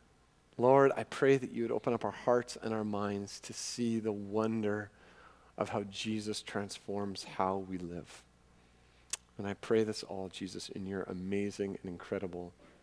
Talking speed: 165 wpm